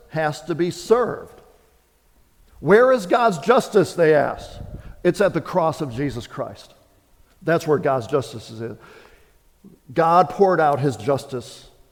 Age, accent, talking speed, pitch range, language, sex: 50-69, American, 135 wpm, 140-180 Hz, English, male